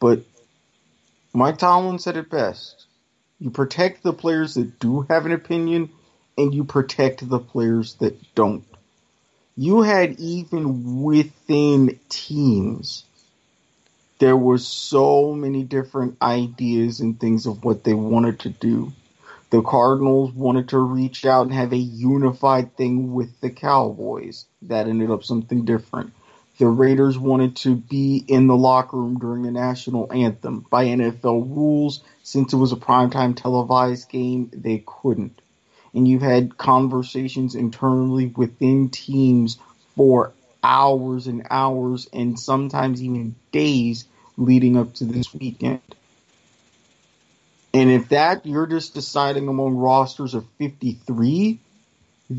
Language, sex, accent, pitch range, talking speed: English, male, American, 120-135 Hz, 130 wpm